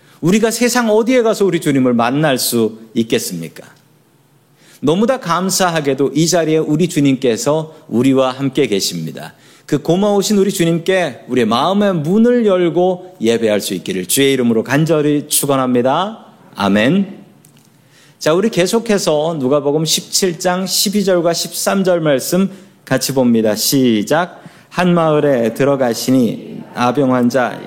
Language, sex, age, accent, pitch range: Korean, male, 40-59, native, 125-185 Hz